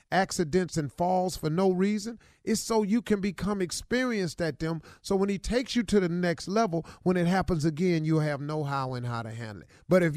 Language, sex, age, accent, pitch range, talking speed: English, male, 50-69, American, 145-220 Hz, 225 wpm